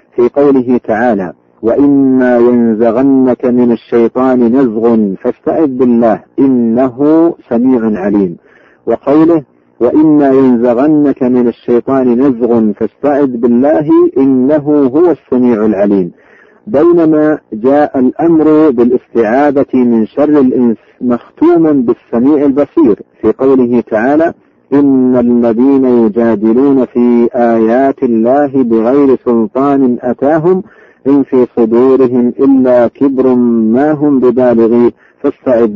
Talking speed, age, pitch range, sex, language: 95 wpm, 50-69, 115-140 Hz, male, Arabic